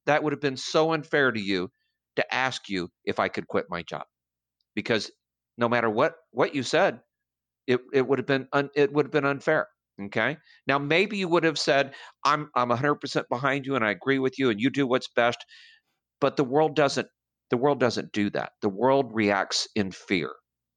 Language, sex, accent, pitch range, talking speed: English, male, American, 110-155 Hz, 210 wpm